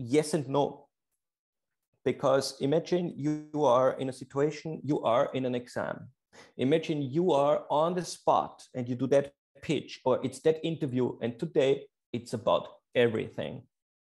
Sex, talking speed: male, 150 wpm